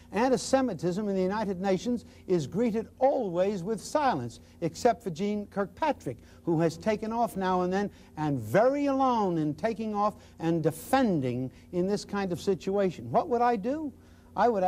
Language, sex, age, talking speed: English, male, 60-79, 165 wpm